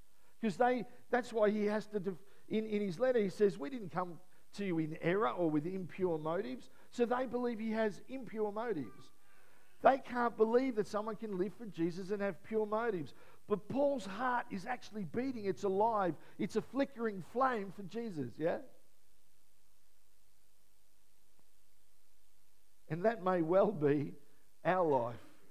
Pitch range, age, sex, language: 170-230 Hz, 50-69, male, English